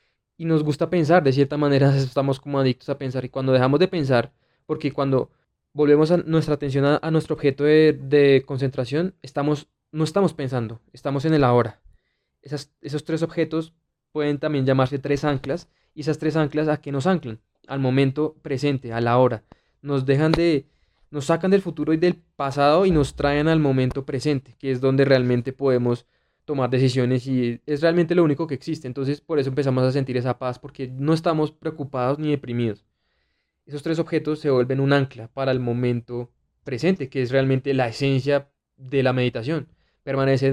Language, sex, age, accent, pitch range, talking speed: Spanish, male, 20-39, Colombian, 130-155 Hz, 185 wpm